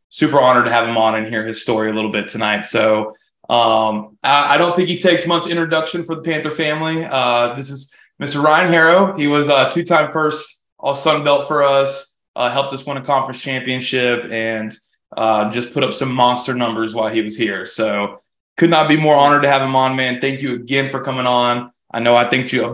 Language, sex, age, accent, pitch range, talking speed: English, male, 20-39, American, 120-145 Hz, 230 wpm